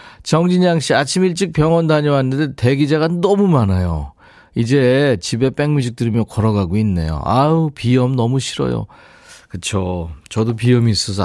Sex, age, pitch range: male, 40-59, 100-155 Hz